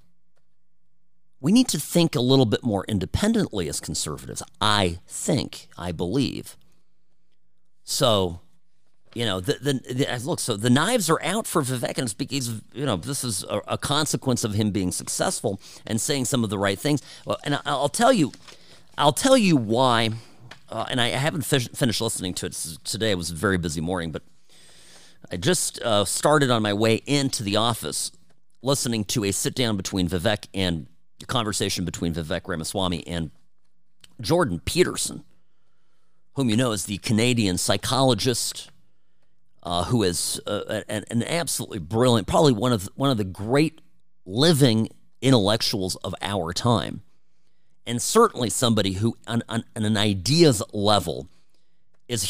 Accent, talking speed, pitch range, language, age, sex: American, 160 wpm, 100-140 Hz, English, 40-59, male